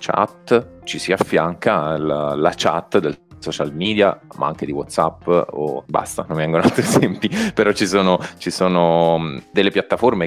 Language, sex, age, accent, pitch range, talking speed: Italian, male, 30-49, native, 85-95 Hz, 165 wpm